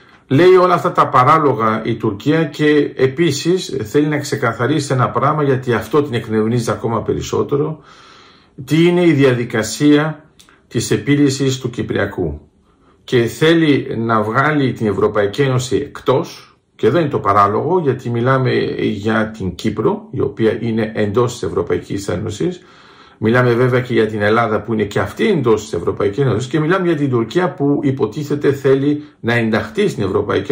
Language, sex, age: Greek, male, 50-69